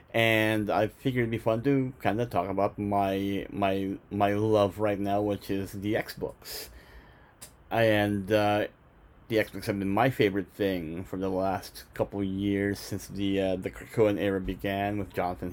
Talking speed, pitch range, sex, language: 175 wpm, 95-105 Hz, male, English